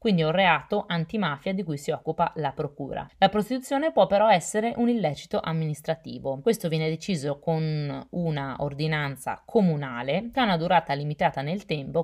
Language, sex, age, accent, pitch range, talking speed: Italian, female, 20-39, native, 145-195 Hz, 160 wpm